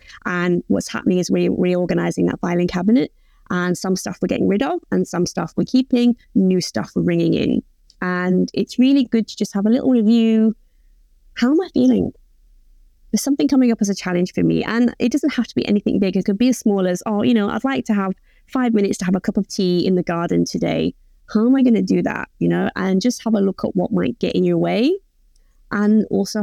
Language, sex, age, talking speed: English, female, 20-39, 240 wpm